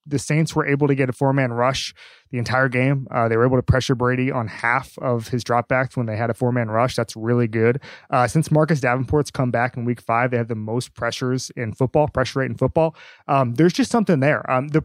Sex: male